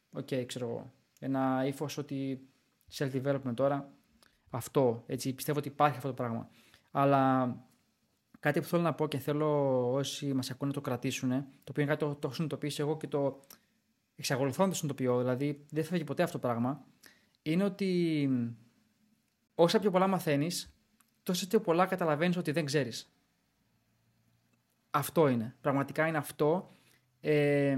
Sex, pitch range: male, 135-165 Hz